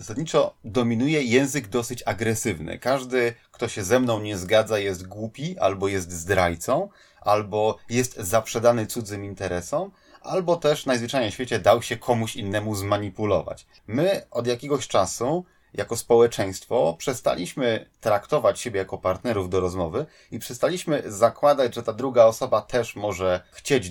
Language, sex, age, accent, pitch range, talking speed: Polish, male, 30-49, native, 100-125 Hz, 140 wpm